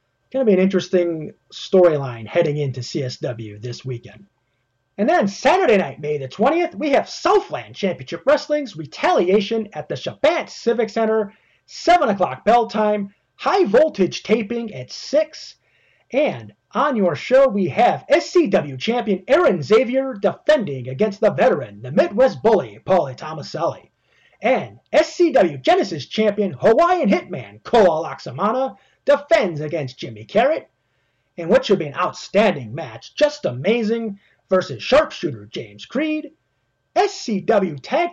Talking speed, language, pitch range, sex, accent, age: 130 wpm, English, 165-260 Hz, male, American, 30-49